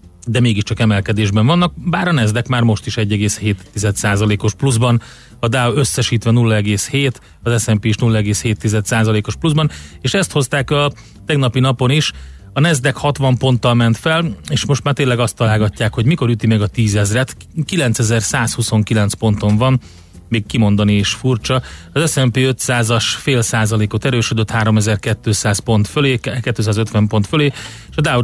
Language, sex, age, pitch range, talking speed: Hungarian, male, 30-49, 105-125 Hz, 145 wpm